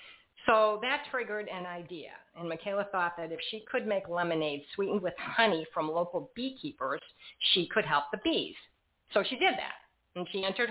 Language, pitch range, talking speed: English, 165-215 Hz, 180 wpm